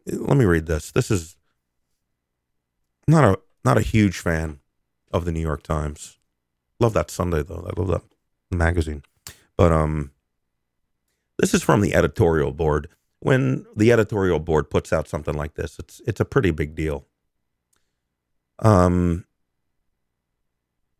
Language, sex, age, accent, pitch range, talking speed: English, male, 40-59, American, 65-95 Hz, 140 wpm